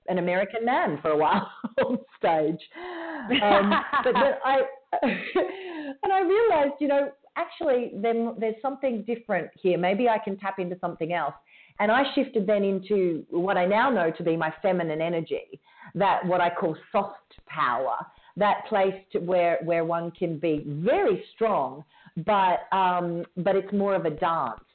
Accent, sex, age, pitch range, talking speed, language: Australian, female, 40-59, 165-220 Hz, 165 wpm, English